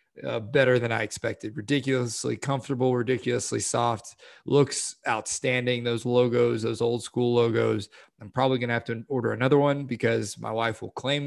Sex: male